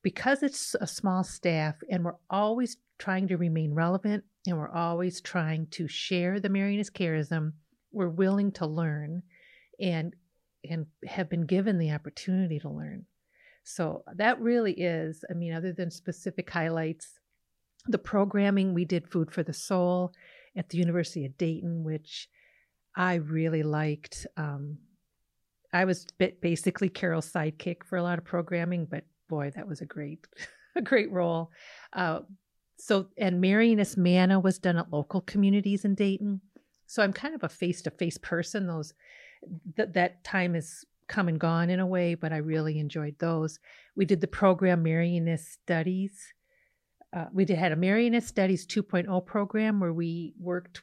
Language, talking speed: English, 155 wpm